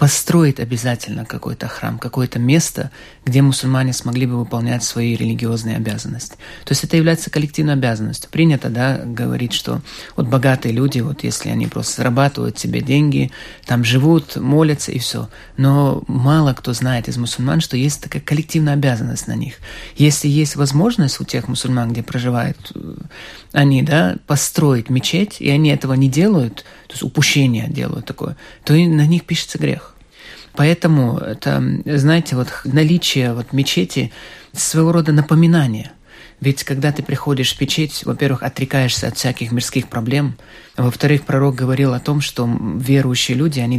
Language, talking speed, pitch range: Russian, 150 wpm, 125-150 Hz